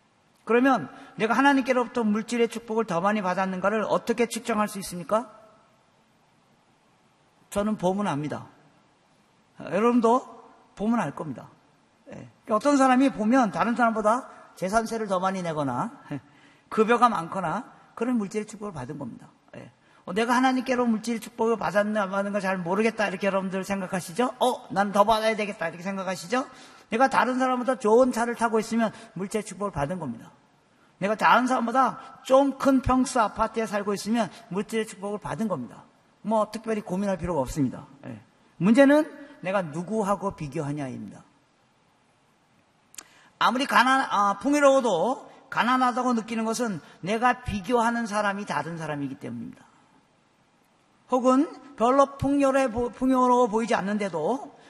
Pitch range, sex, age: 195-245 Hz, male, 40-59